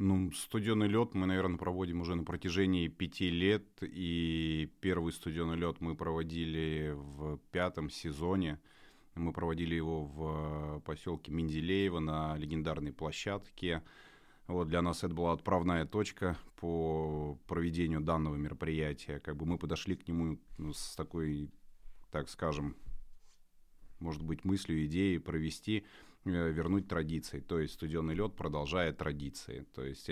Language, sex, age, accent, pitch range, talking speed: Russian, male, 30-49, native, 75-90 Hz, 130 wpm